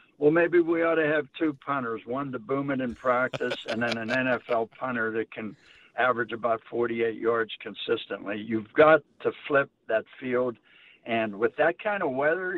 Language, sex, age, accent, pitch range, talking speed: English, male, 60-79, American, 115-150 Hz, 180 wpm